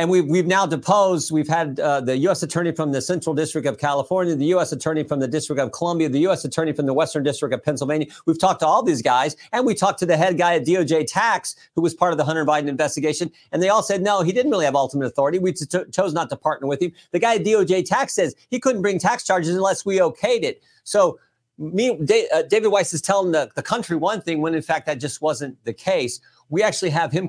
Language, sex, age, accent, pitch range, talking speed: English, male, 50-69, American, 145-180 Hz, 250 wpm